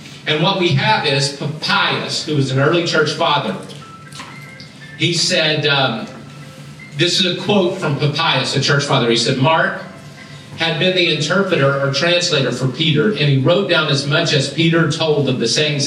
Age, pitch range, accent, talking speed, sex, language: 40-59, 135-175 Hz, American, 180 wpm, male, English